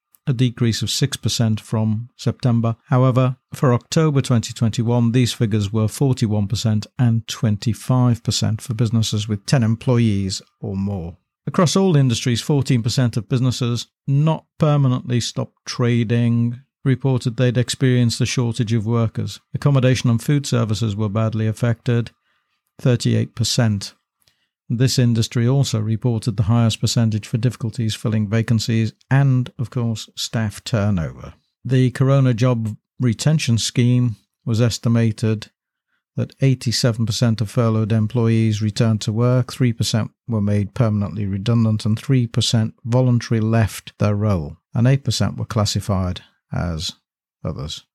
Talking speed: 120 wpm